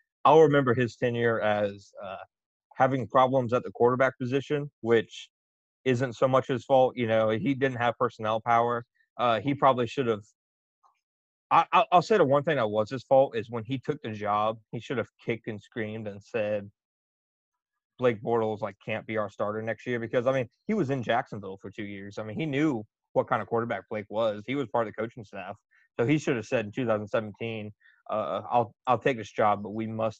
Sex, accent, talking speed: male, American, 210 wpm